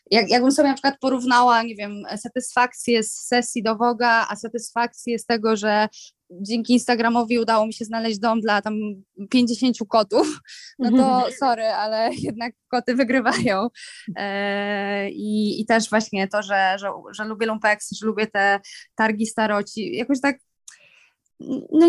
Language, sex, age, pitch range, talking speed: Polish, female, 20-39, 225-290 Hz, 145 wpm